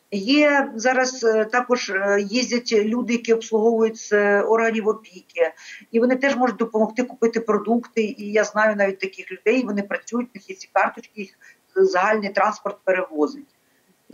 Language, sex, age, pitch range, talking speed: Ukrainian, female, 50-69, 215-265 Hz, 130 wpm